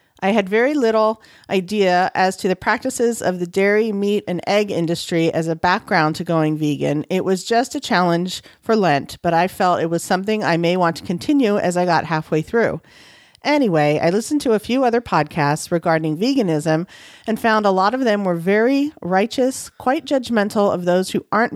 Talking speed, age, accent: 195 wpm, 40-59, American